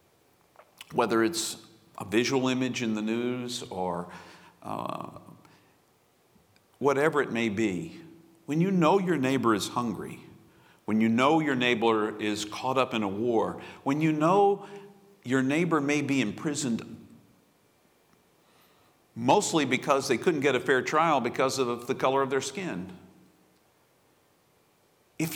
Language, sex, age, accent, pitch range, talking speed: English, male, 50-69, American, 130-220 Hz, 135 wpm